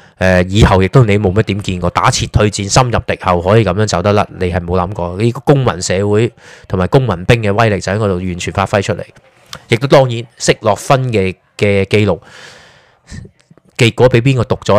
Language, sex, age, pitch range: Chinese, male, 20-39, 95-125 Hz